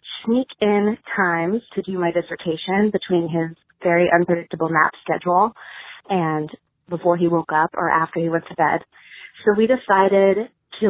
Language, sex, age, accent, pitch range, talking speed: English, female, 20-39, American, 175-220 Hz, 150 wpm